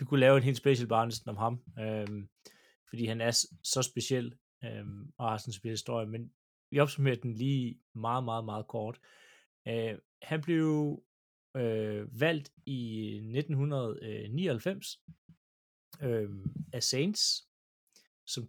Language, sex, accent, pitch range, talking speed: Danish, male, native, 110-140 Hz, 135 wpm